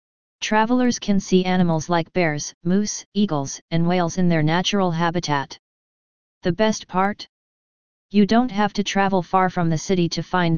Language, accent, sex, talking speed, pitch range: English, American, female, 160 wpm, 165-190 Hz